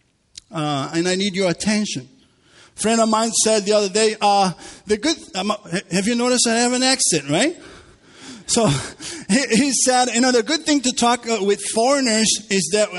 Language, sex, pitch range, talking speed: English, male, 170-220 Hz, 175 wpm